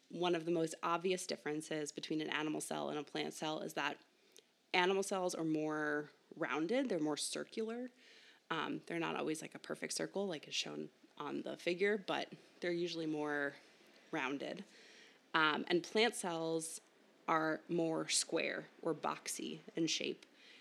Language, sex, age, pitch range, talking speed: English, female, 20-39, 155-200 Hz, 155 wpm